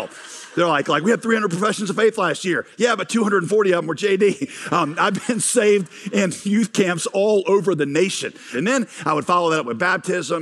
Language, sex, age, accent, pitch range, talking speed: English, male, 50-69, American, 150-205 Hz, 220 wpm